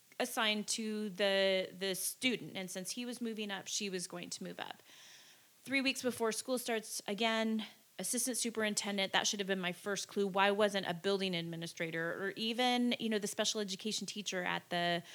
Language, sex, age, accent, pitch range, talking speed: English, female, 30-49, American, 185-230 Hz, 185 wpm